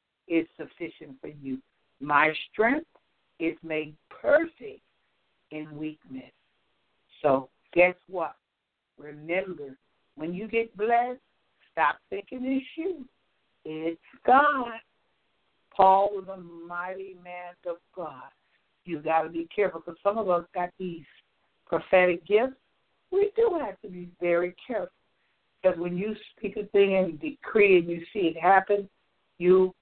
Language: English